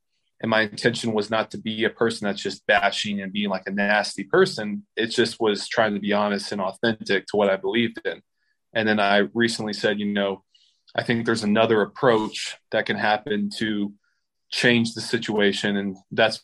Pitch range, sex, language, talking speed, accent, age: 100-115 Hz, male, English, 195 wpm, American, 20-39